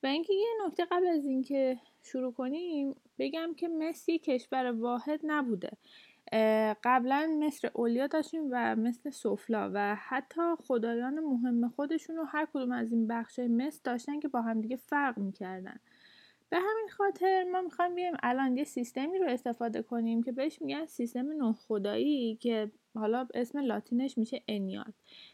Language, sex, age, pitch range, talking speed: Persian, female, 10-29, 230-310 Hz, 150 wpm